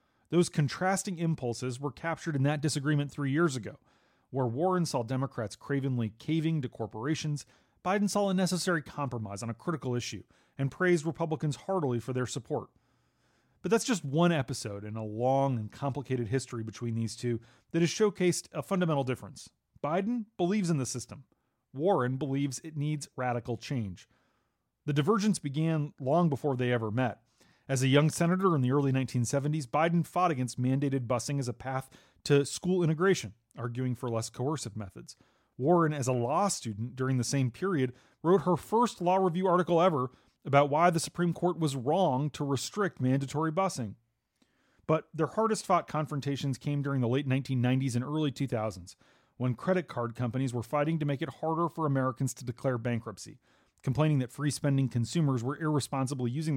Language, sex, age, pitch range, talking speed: English, male, 30-49, 125-165 Hz, 170 wpm